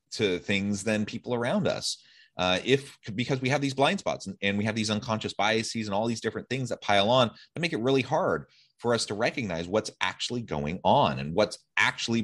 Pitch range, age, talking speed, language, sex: 90-125 Hz, 30-49, 220 wpm, English, male